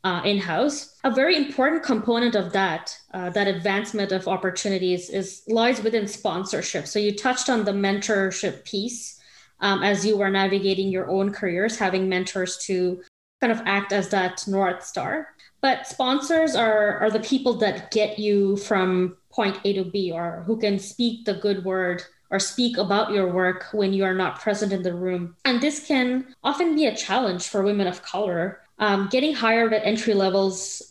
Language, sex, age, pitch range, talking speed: English, female, 20-39, 185-225 Hz, 180 wpm